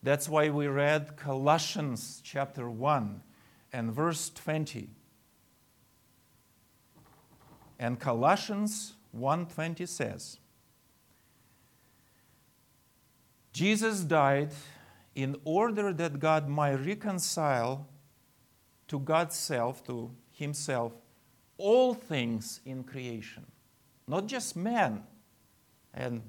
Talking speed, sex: 80 wpm, male